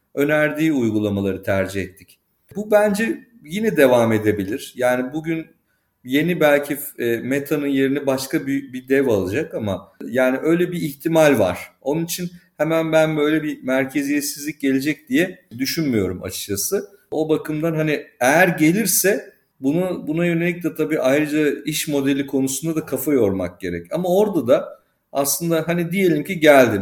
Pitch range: 125-155 Hz